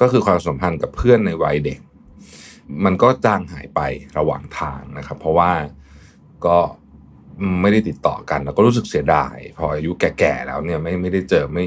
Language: Thai